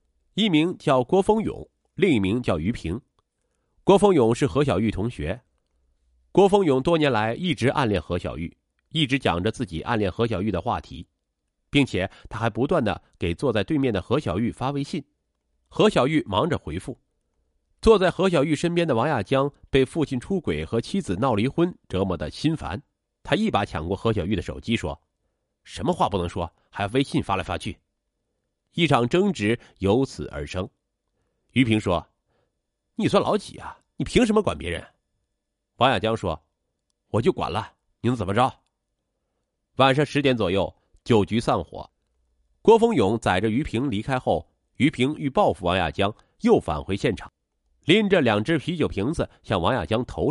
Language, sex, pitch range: Chinese, male, 85-140 Hz